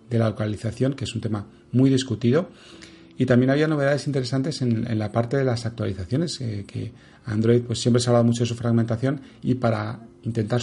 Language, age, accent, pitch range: Spanish, 40-59, Spanish, 110-125 Hz